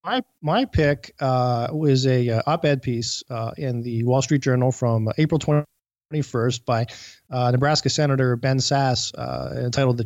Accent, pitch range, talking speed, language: American, 120-140 Hz, 160 wpm, English